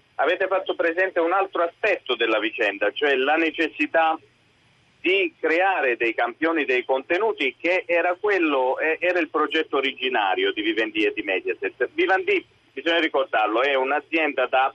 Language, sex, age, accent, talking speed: Italian, male, 40-59, native, 140 wpm